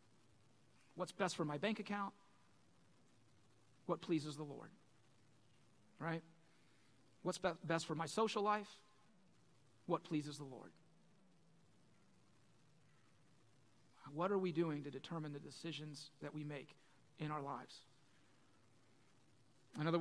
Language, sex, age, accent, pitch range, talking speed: English, male, 40-59, American, 130-170 Hz, 110 wpm